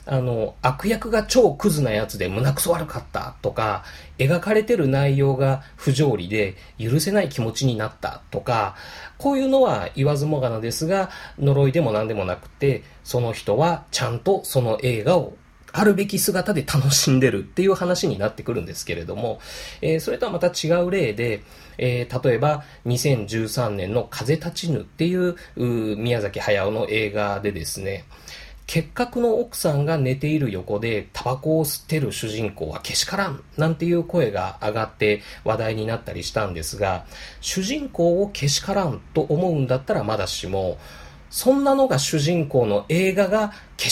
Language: Japanese